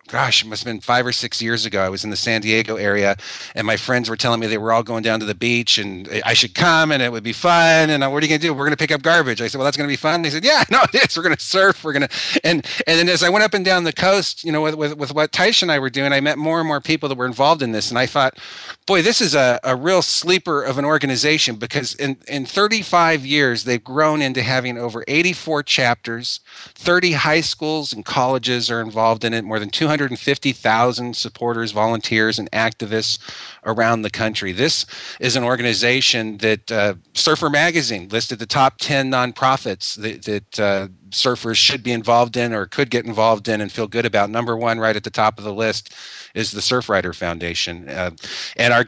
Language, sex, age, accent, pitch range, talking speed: English, male, 40-59, American, 110-145 Hz, 245 wpm